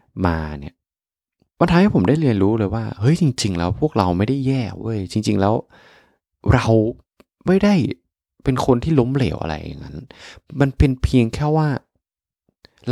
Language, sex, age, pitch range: Thai, male, 20-39, 90-130 Hz